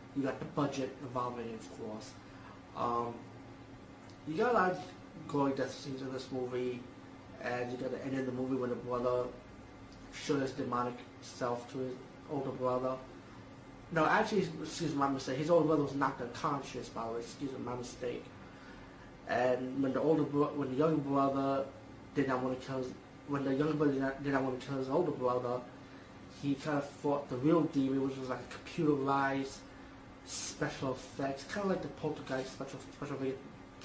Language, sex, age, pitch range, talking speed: English, male, 30-49, 125-145 Hz, 185 wpm